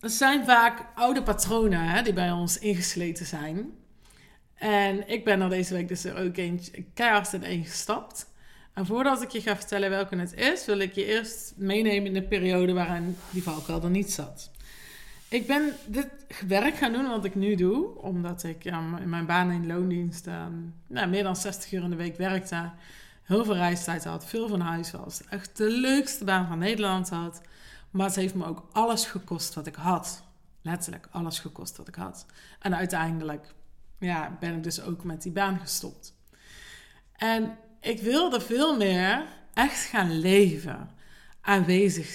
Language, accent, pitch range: Dutch, Dutch, 175-210 Hz